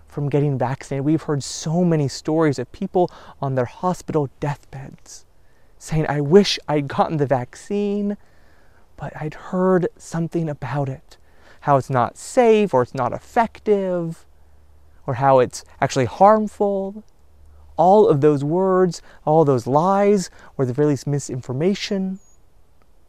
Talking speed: 135 wpm